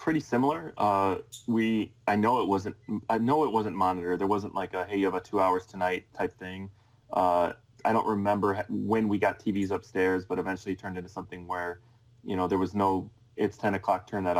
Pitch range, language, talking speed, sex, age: 90-110 Hz, English, 215 wpm, male, 20-39